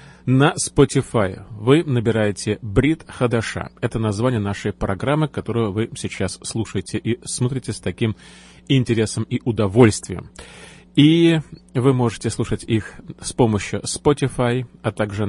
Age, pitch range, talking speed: 30-49, 105-130 Hz, 120 wpm